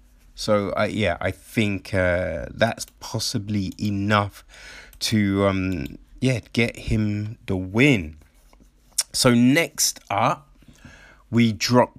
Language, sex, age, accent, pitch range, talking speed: English, male, 20-39, British, 95-125 Hz, 105 wpm